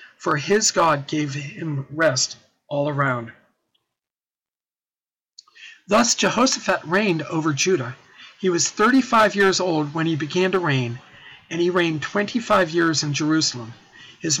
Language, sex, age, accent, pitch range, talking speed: English, male, 50-69, American, 145-200 Hz, 130 wpm